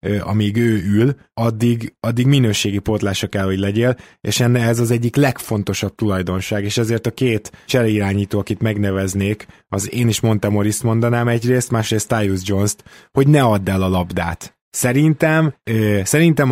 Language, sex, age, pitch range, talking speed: Hungarian, male, 20-39, 100-125 Hz, 155 wpm